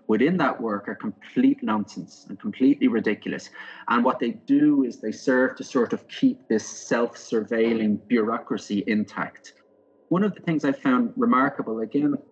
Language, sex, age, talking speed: English, male, 30-49, 155 wpm